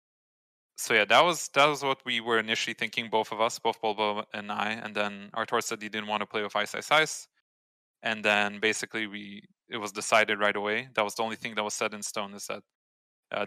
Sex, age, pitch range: male, 20-39, 105-115 Hz